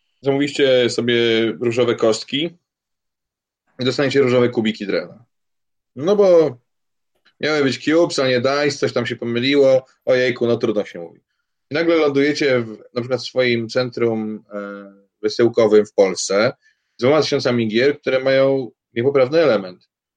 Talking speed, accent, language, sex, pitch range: 135 wpm, native, Polish, male, 110-140 Hz